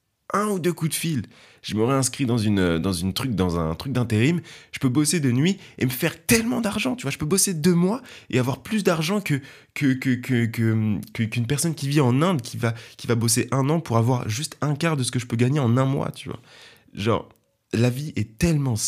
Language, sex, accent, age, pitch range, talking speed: French, male, French, 20-39, 100-135 Hz, 245 wpm